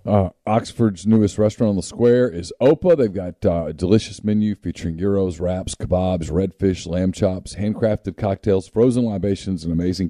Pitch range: 90-110 Hz